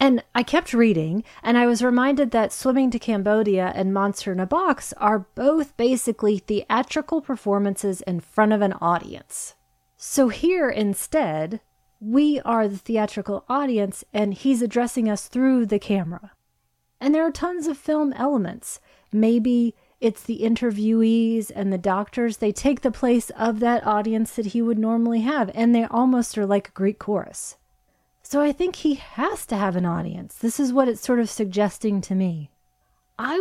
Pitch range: 200-250 Hz